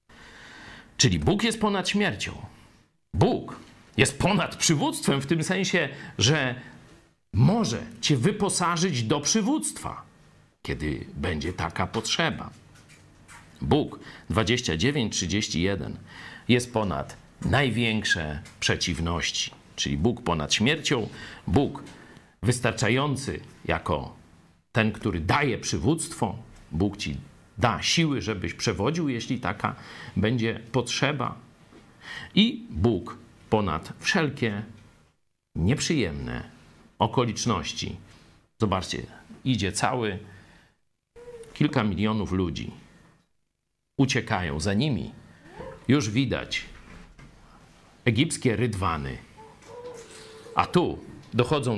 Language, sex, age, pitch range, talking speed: Polish, male, 50-69, 100-145 Hz, 80 wpm